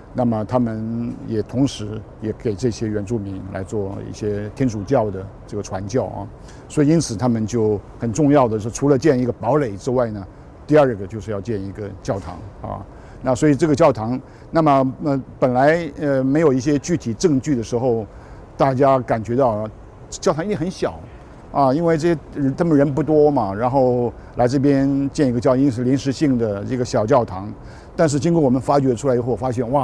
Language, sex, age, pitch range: Chinese, male, 50-69, 110-140 Hz